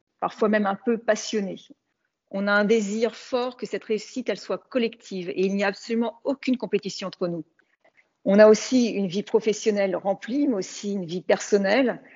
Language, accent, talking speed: English, French, 185 wpm